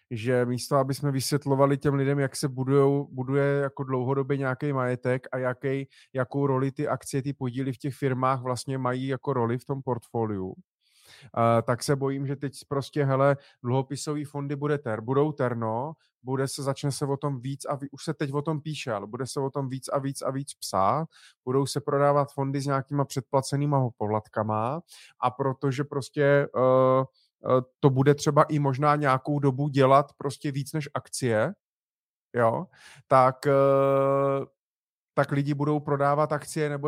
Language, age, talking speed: Czech, 20-39, 165 wpm